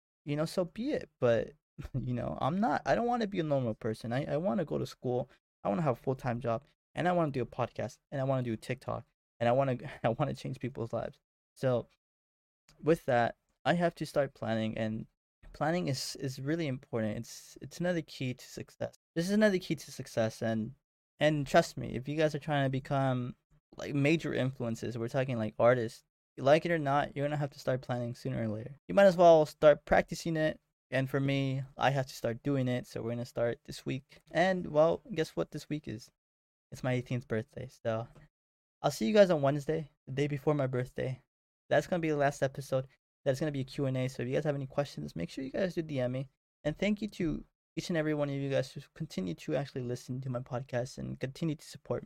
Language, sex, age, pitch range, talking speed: English, male, 20-39, 125-155 Hz, 245 wpm